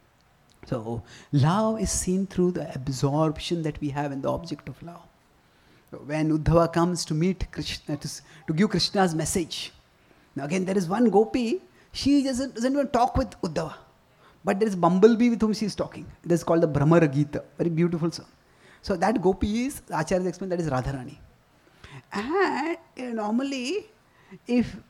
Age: 30-49